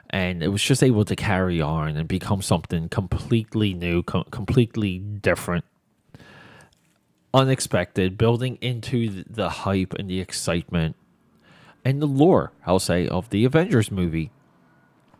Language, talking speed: English, 125 wpm